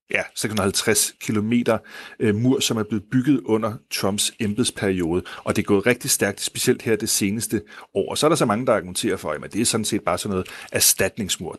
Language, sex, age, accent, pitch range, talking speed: Danish, male, 30-49, native, 100-115 Hz, 205 wpm